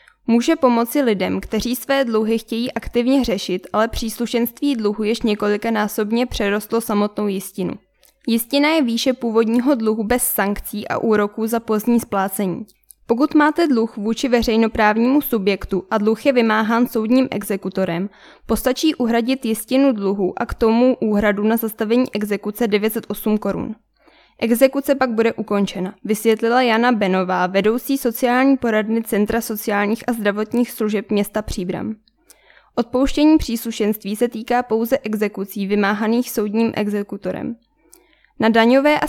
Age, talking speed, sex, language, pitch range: 10-29, 125 wpm, female, Czech, 210-250 Hz